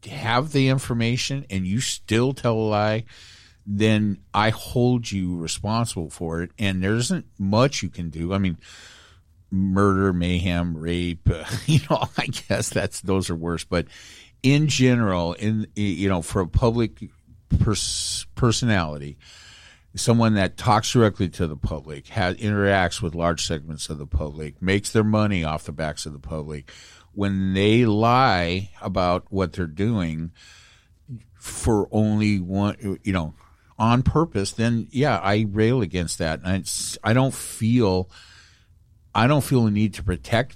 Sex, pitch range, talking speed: male, 90-115 Hz, 150 wpm